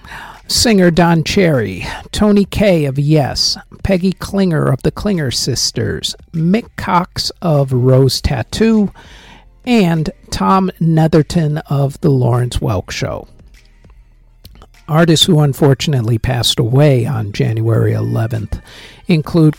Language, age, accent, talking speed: English, 50-69, American, 105 wpm